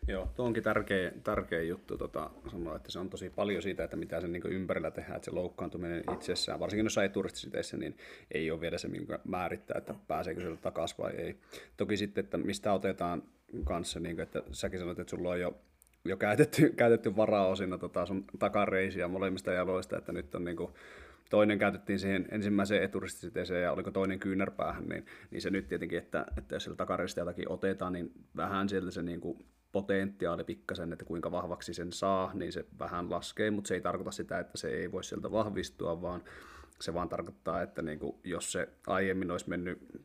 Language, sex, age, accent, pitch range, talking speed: Finnish, male, 30-49, native, 85-100 Hz, 190 wpm